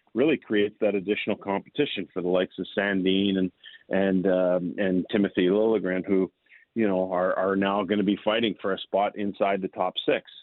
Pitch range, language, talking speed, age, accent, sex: 95-105 Hz, English, 190 wpm, 40-59, American, male